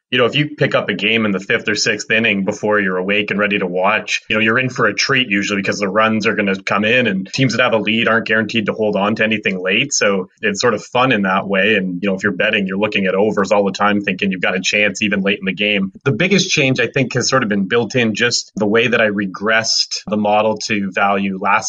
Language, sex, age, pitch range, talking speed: English, male, 30-49, 100-115 Hz, 290 wpm